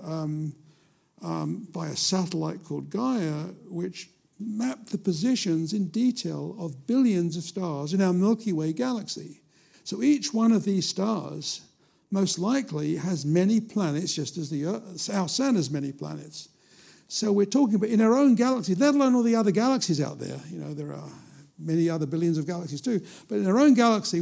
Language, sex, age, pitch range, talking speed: English, male, 60-79, 155-210 Hz, 170 wpm